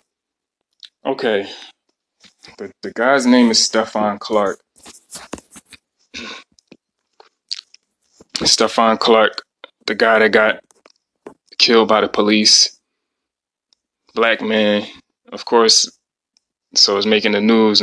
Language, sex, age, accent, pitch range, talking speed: English, male, 20-39, American, 105-120 Hz, 90 wpm